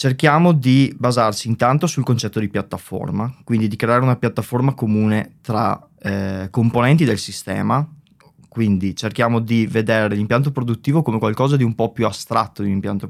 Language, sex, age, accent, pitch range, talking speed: Italian, male, 20-39, native, 110-140 Hz, 160 wpm